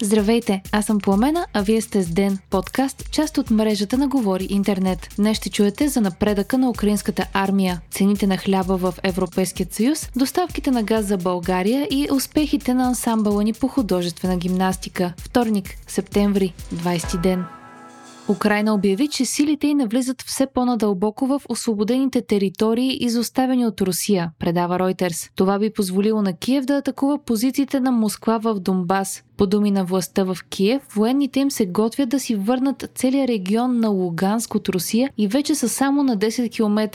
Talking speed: 160 wpm